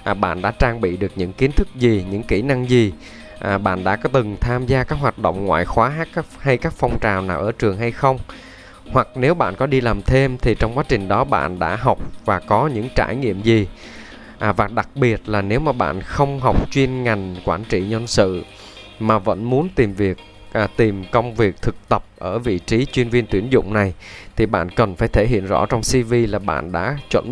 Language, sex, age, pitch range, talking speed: Vietnamese, male, 20-39, 95-125 Hz, 230 wpm